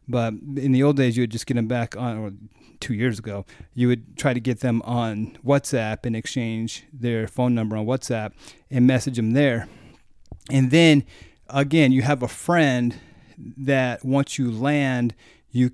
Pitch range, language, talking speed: 115-140 Hz, English, 180 wpm